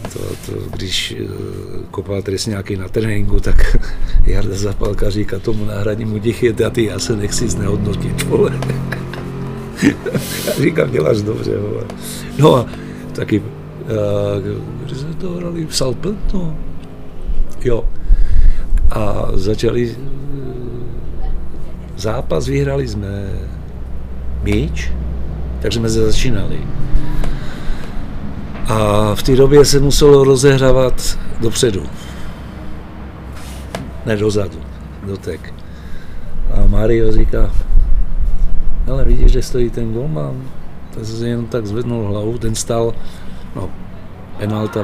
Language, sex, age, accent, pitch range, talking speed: Czech, male, 50-69, native, 85-115 Hz, 105 wpm